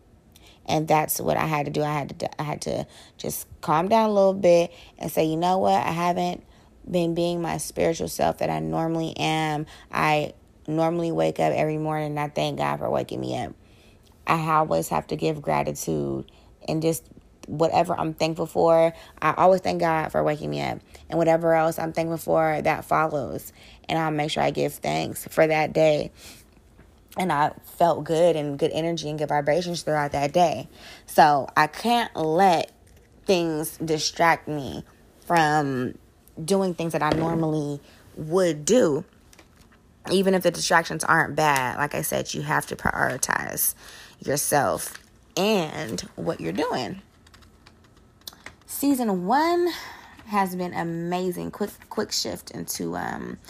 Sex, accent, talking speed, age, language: female, American, 160 wpm, 20-39, English